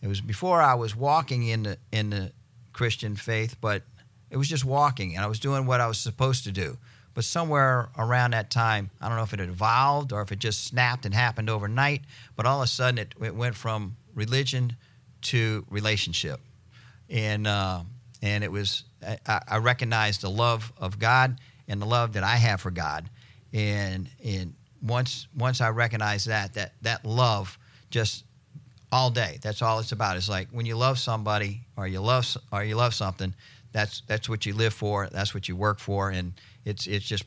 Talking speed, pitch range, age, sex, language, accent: 200 wpm, 100-125 Hz, 50-69, male, English, American